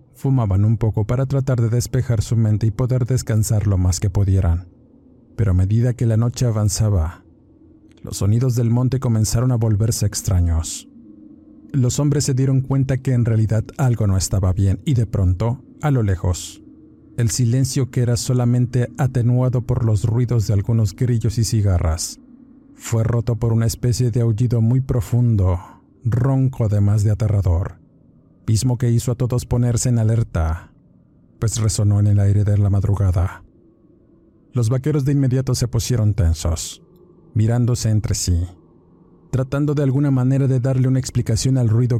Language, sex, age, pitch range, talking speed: Spanish, male, 50-69, 105-130 Hz, 160 wpm